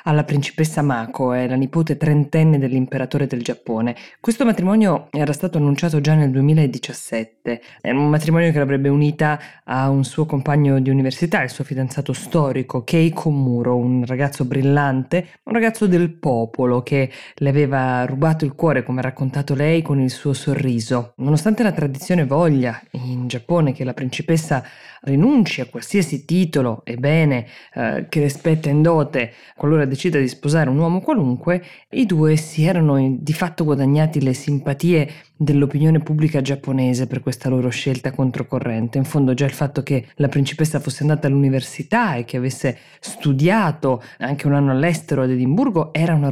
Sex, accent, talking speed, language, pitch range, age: female, native, 160 wpm, Italian, 130-155 Hz, 20-39